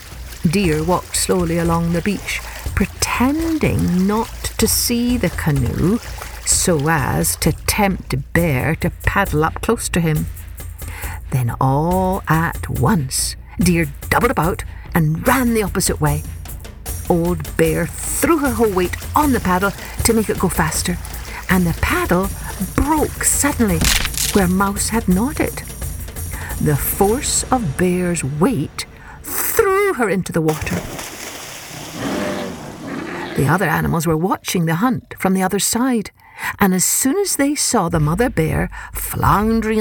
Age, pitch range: 60-79, 150-230 Hz